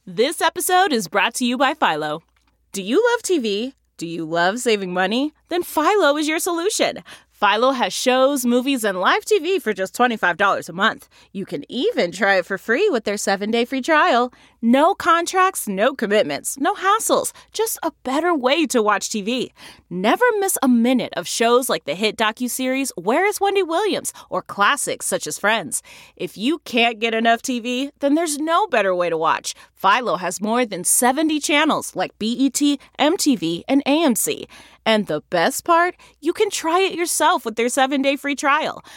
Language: English